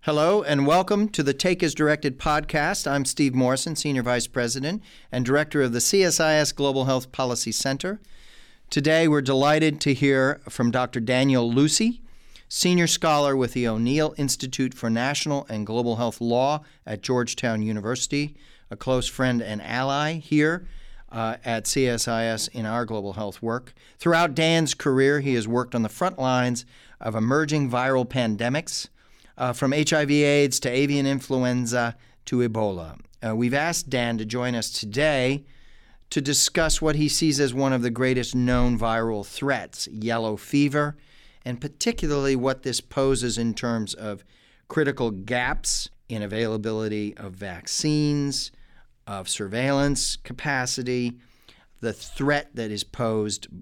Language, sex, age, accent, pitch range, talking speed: English, male, 40-59, American, 120-145 Hz, 145 wpm